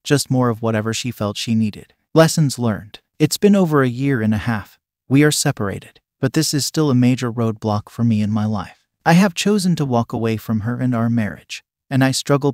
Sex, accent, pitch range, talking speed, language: male, American, 115-140 Hz, 225 wpm, English